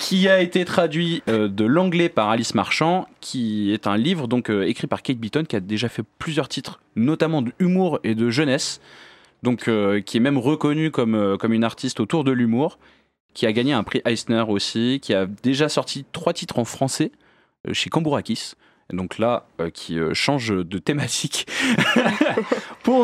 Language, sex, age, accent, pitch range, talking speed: French, male, 20-39, French, 110-160 Hz, 180 wpm